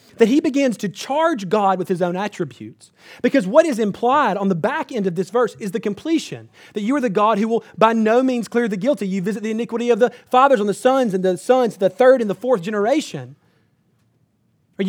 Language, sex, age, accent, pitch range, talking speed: English, male, 30-49, American, 145-225 Hz, 230 wpm